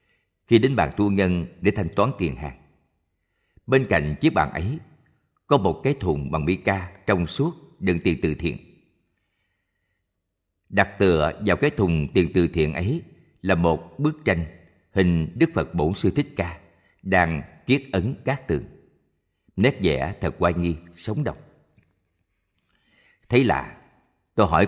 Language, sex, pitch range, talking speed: Vietnamese, male, 85-105 Hz, 155 wpm